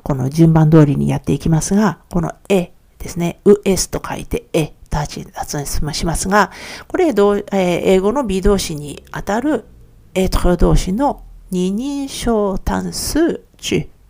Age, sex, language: 50-69, female, Japanese